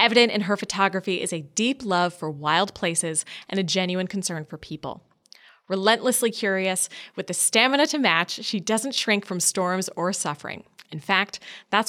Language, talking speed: English, 170 wpm